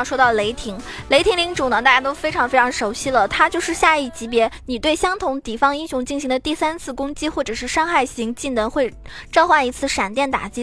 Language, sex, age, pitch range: Chinese, female, 20-39, 235-295 Hz